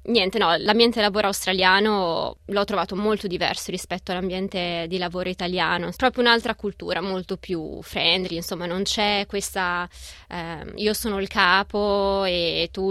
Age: 20-39